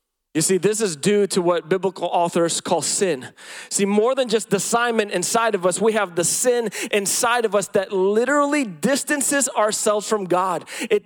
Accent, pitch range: American, 185-225 Hz